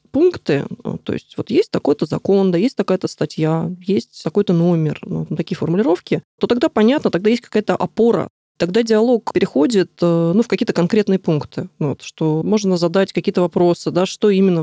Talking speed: 170 wpm